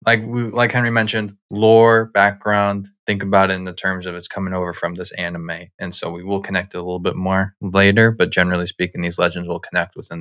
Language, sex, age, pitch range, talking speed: English, male, 20-39, 90-105 Hz, 225 wpm